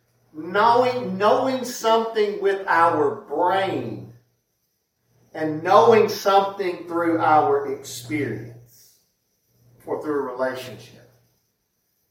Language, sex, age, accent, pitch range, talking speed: English, male, 40-59, American, 190-270 Hz, 80 wpm